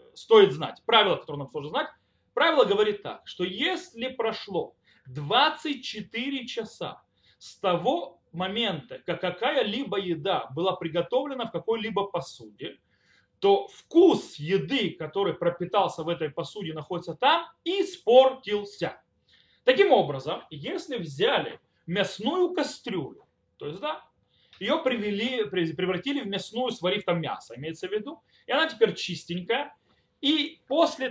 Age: 30-49